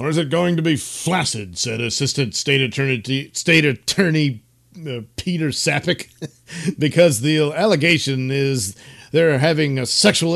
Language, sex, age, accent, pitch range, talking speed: English, male, 50-69, American, 125-165 Hz, 140 wpm